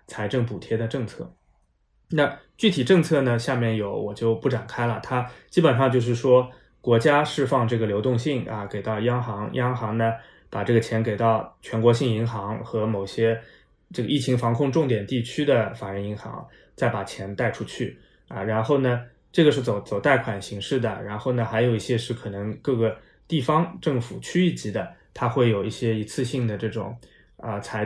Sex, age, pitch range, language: male, 20-39, 110-125 Hz, Chinese